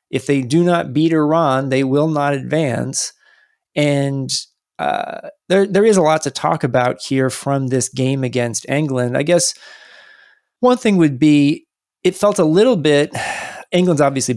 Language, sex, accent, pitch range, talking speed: English, male, American, 130-180 Hz, 165 wpm